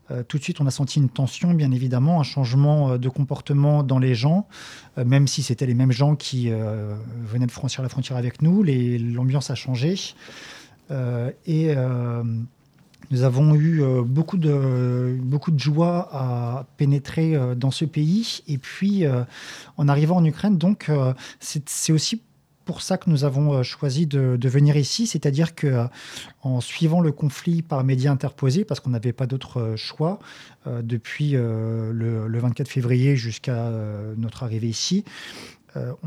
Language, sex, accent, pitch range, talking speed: French, male, French, 125-160 Hz, 185 wpm